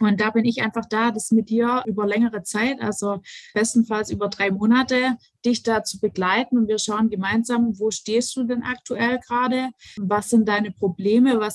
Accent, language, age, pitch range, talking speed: German, German, 20-39, 195-230 Hz, 185 wpm